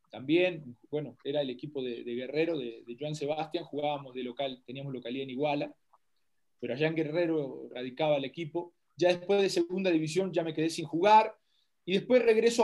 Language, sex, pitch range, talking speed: Spanish, male, 155-210 Hz, 185 wpm